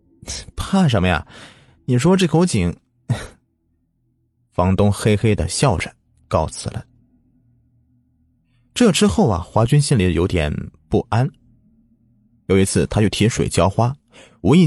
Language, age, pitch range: Chinese, 30-49, 95-135 Hz